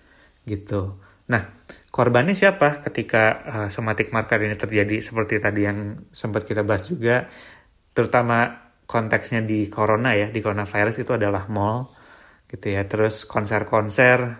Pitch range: 105-120 Hz